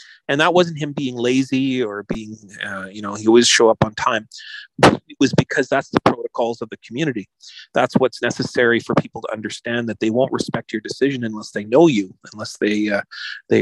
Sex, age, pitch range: male, 30-49, 110-135 Hz